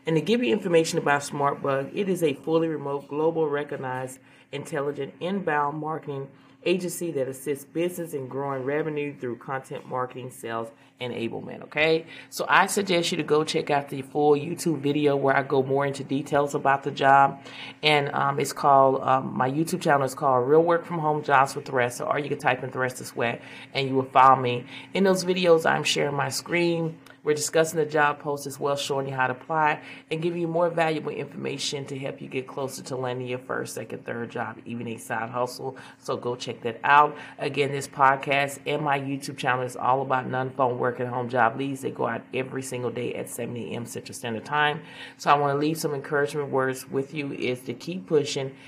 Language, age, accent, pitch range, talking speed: English, 30-49, American, 130-155 Hz, 210 wpm